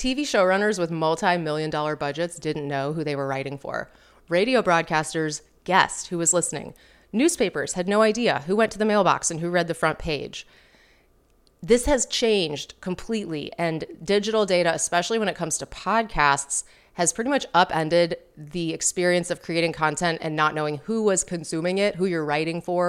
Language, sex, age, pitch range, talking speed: English, female, 30-49, 155-195 Hz, 175 wpm